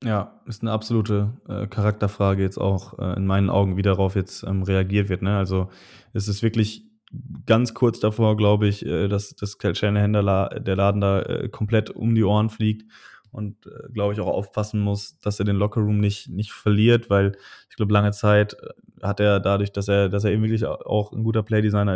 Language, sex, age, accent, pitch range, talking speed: German, male, 20-39, German, 100-105 Hz, 200 wpm